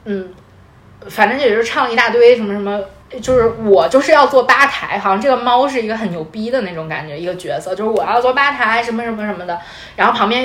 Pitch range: 195-280 Hz